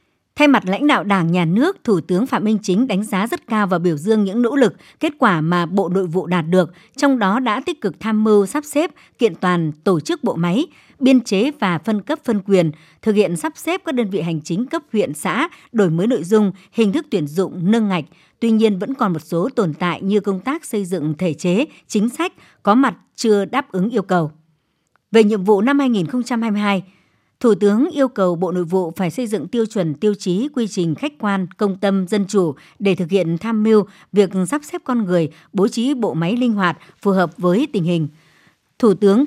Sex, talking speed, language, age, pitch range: male, 225 wpm, Vietnamese, 60-79, 180-240 Hz